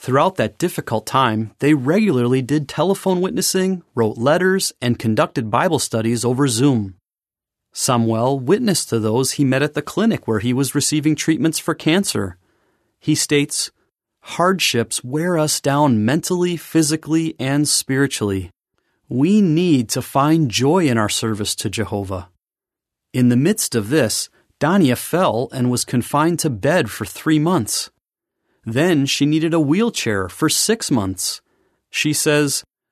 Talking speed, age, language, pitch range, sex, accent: 140 wpm, 30-49, English, 115-160 Hz, male, American